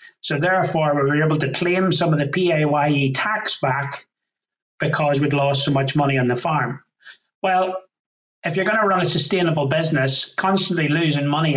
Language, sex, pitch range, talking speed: English, male, 140-180 Hz, 175 wpm